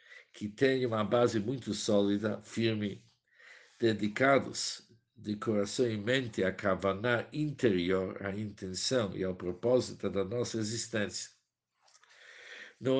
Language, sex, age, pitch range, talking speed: Portuguese, male, 60-79, 100-120 Hz, 110 wpm